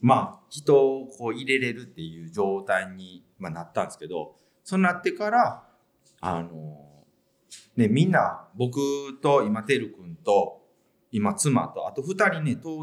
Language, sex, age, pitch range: Japanese, male, 40-59, 95-160 Hz